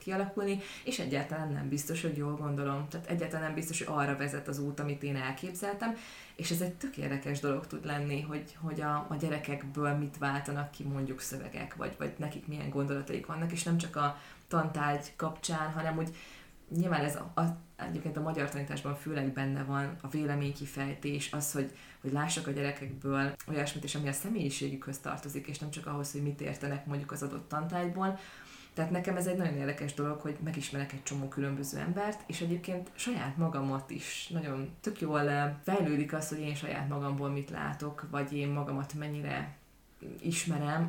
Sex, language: female, Hungarian